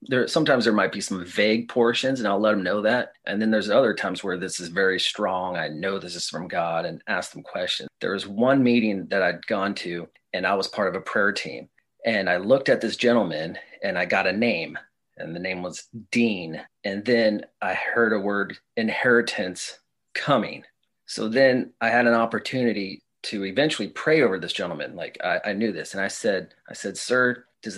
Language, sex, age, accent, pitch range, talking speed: English, male, 30-49, American, 105-130 Hz, 210 wpm